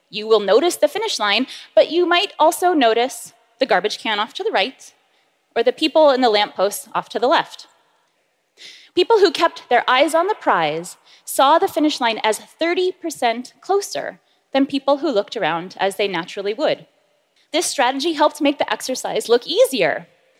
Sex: female